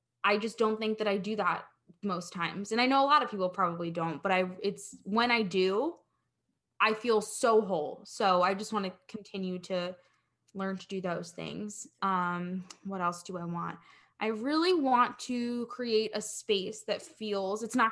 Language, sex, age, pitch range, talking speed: English, female, 10-29, 195-235 Hz, 195 wpm